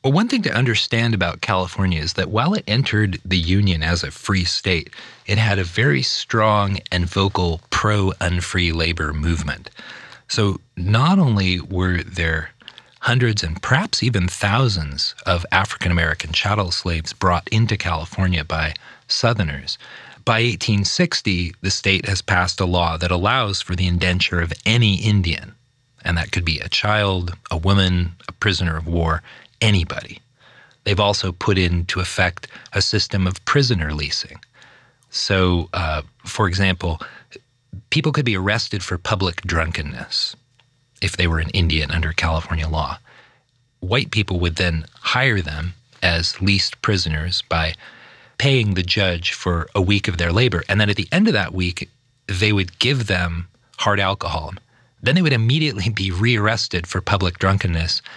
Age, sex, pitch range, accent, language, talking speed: 30-49, male, 85-110 Hz, American, English, 150 wpm